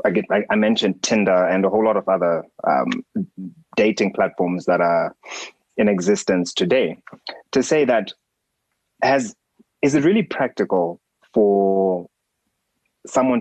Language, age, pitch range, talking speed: English, 20-39, 90-110 Hz, 130 wpm